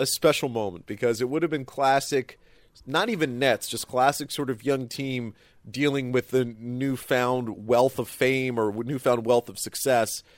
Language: English